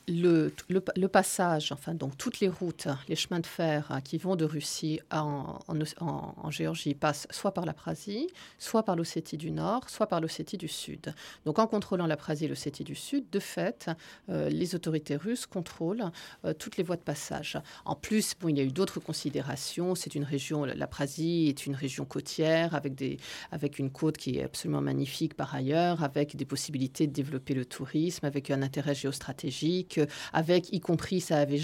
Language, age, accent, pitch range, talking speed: French, 40-59, French, 145-185 Hz, 195 wpm